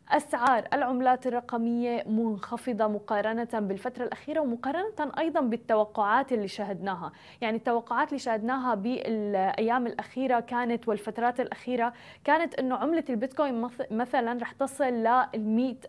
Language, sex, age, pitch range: English, female, 20-39, 220-270 Hz